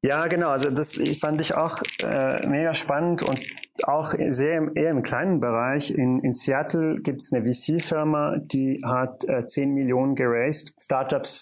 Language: German